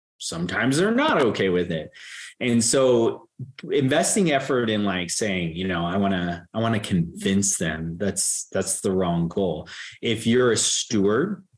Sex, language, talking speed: male, English, 165 wpm